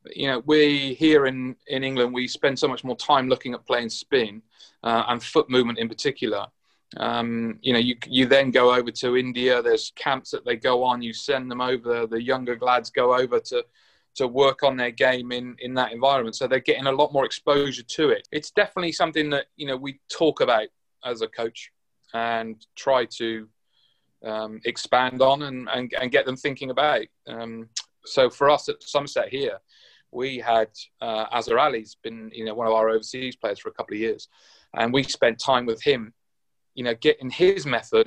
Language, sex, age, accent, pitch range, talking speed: English, male, 30-49, British, 120-155 Hz, 205 wpm